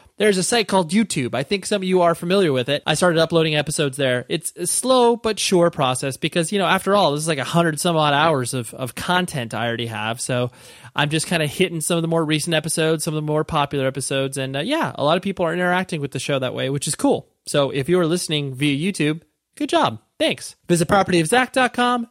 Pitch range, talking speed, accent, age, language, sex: 135-185 Hz, 245 wpm, American, 20-39, English, male